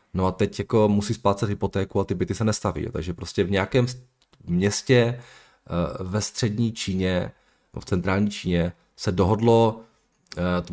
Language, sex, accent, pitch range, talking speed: Czech, male, native, 90-110 Hz, 145 wpm